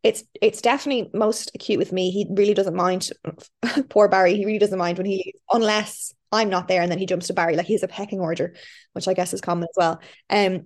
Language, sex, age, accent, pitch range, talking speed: English, female, 20-39, Irish, 195-235 Hz, 235 wpm